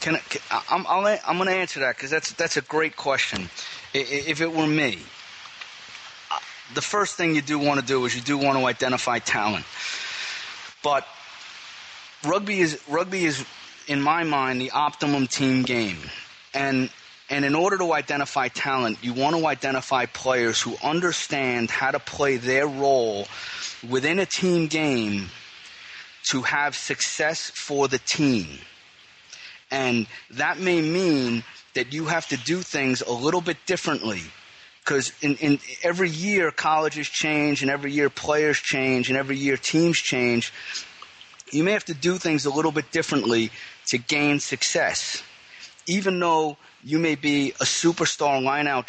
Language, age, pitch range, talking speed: English, 30-49, 130-160 Hz, 155 wpm